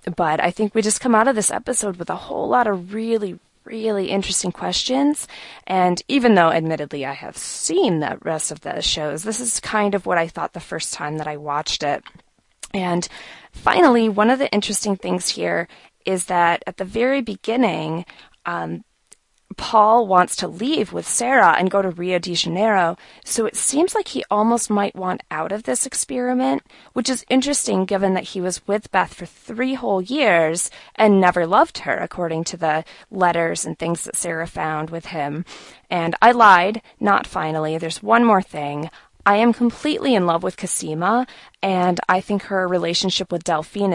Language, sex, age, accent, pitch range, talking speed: English, female, 20-39, American, 170-220 Hz, 185 wpm